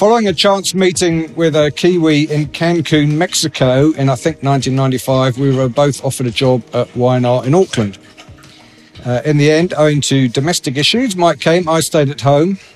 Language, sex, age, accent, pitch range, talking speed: English, male, 50-69, British, 130-155 Hz, 180 wpm